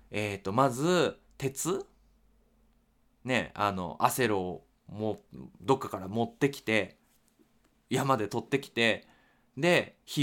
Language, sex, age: Japanese, male, 20-39